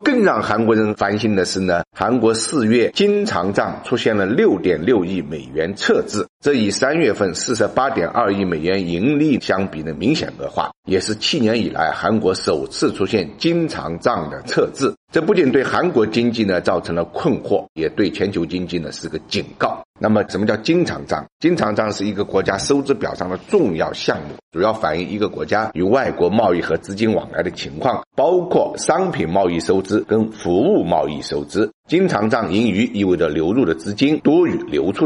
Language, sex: Chinese, male